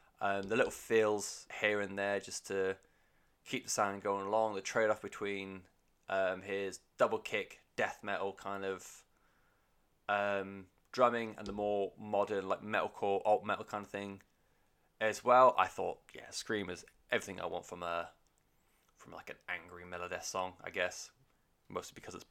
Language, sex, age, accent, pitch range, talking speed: English, male, 20-39, British, 95-125 Hz, 165 wpm